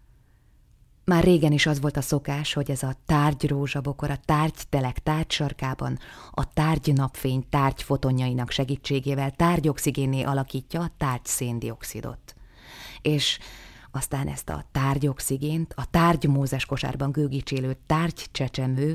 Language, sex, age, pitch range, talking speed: Hungarian, female, 20-39, 135-160 Hz, 115 wpm